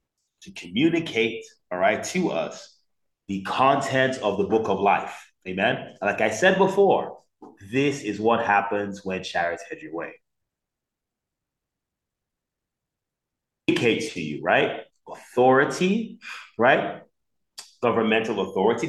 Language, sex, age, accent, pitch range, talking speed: English, male, 30-49, American, 95-135 Hz, 110 wpm